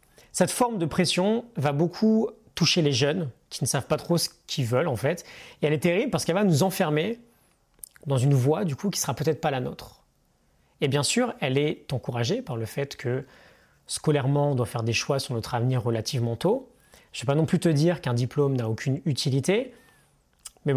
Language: French